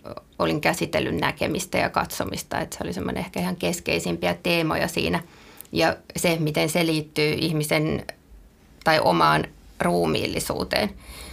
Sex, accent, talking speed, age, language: female, native, 120 wpm, 20-39, Finnish